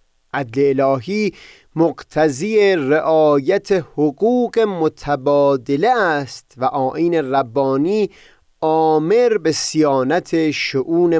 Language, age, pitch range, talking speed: Persian, 30-49, 135-165 Hz, 75 wpm